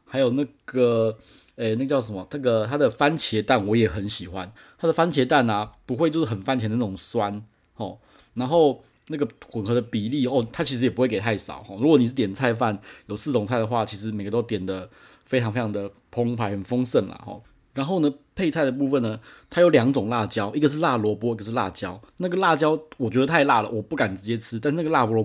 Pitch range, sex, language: 105-135 Hz, male, Chinese